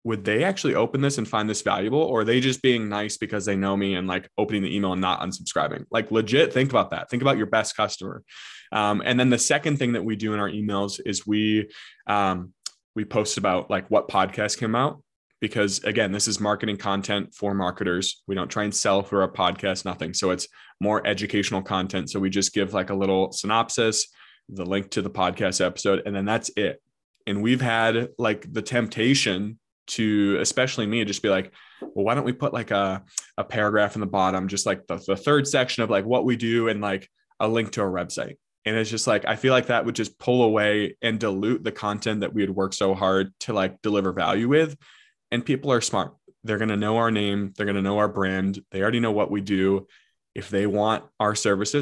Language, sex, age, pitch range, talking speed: English, male, 20-39, 100-115 Hz, 225 wpm